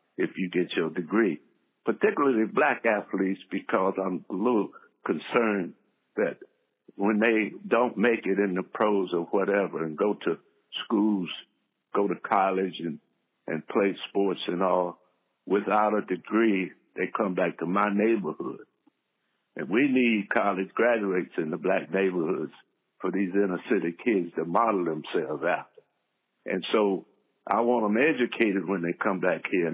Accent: American